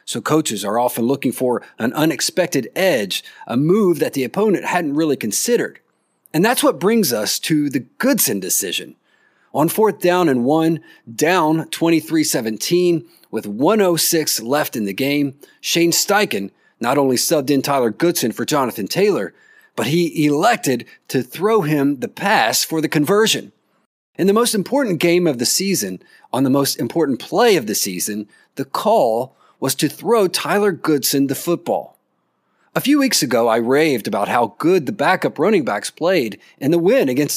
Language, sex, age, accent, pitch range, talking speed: English, male, 40-59, American, 140-195 Hz, 170 wpm